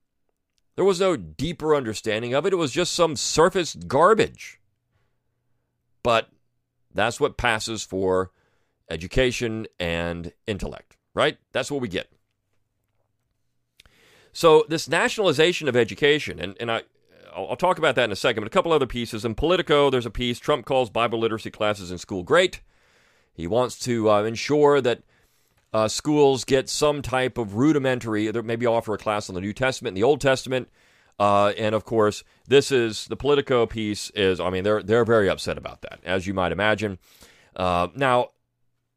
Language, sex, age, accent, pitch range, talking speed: English, male, 40-59, American, 100-135 Hz, 165 wpm